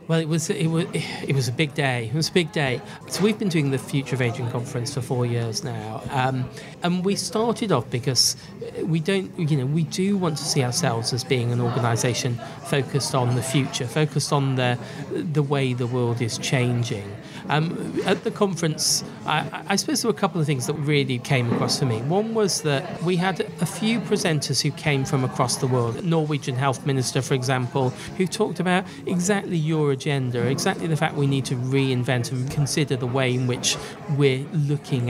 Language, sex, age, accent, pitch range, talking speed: English, male, 40-59, British, 135-165 Hz, 205 wpm